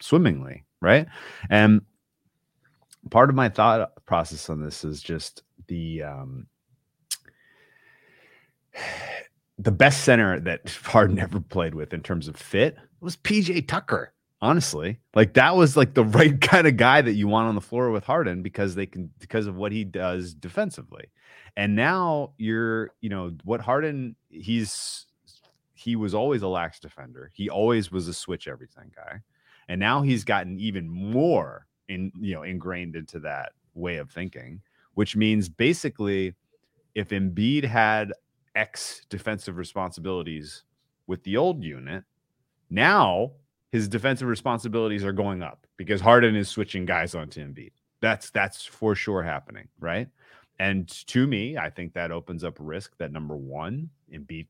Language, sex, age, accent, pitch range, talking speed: English, male, 30-49, American, 90-120 Hz, 150 wpm